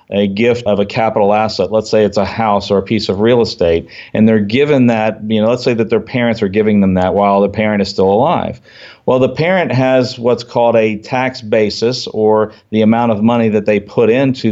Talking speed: 230 wpm